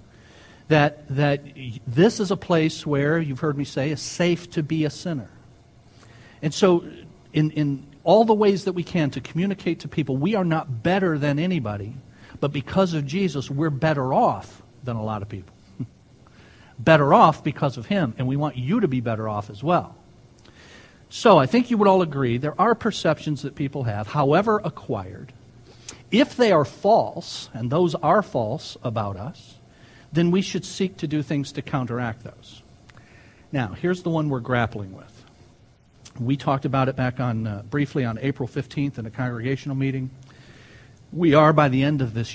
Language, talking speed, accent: English, 180 wpm, American